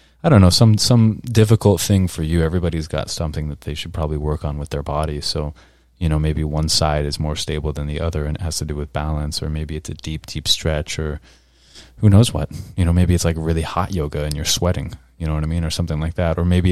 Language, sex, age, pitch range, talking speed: English, male, 20-39, 75-90 Hz, 260 wpm